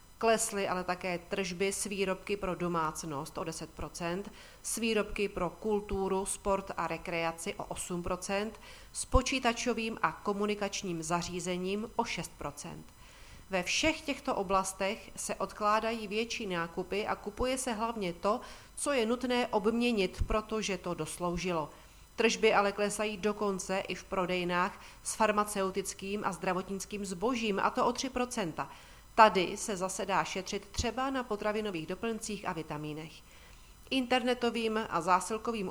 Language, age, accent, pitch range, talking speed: Czech, 40-59, native, 180-225 Hz, 130 wpm